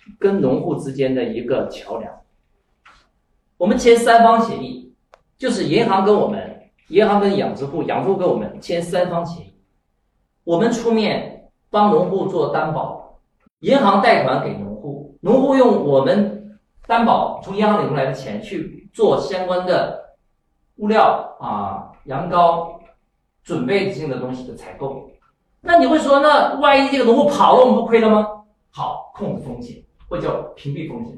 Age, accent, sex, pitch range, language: 50-69, native, male, 170-230 Hz, Chinese